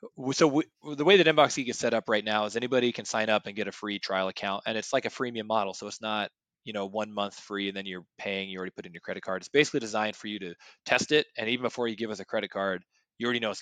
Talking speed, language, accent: 300 wpm, English, American